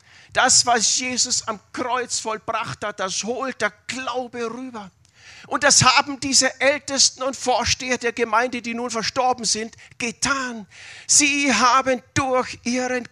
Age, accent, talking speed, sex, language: 40-59, German, 135 wpm, male, German